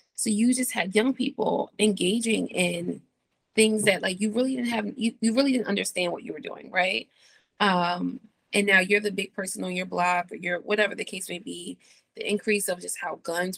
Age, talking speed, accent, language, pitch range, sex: 20-39, 210 wpm, American, English, 190-225 Hz, female